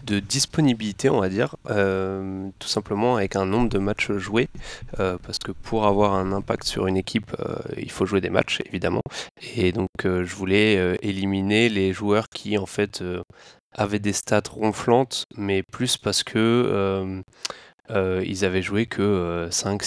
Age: 20-39